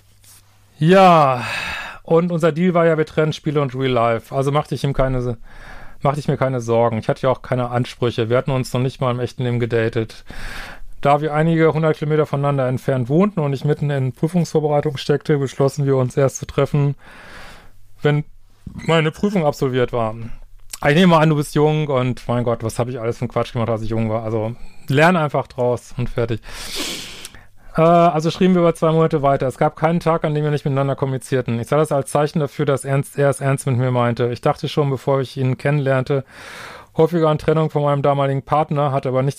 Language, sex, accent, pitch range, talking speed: German, male, German, 125-150 Hz, 210 wpm